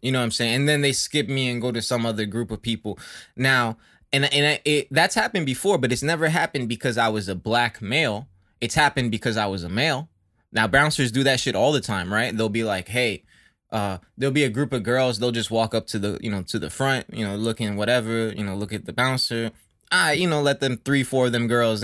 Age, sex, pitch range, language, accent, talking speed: 20-39, male, 110-140 Hz, English, American, 260 wpm